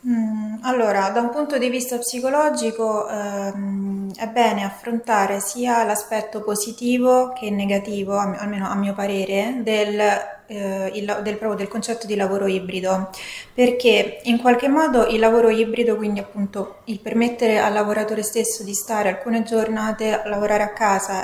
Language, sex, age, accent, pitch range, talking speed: Italian, female, 20-39, native, 210-235 Hz, 145 wpm